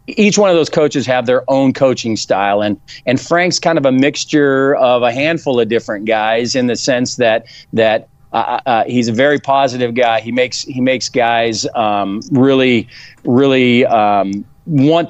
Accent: American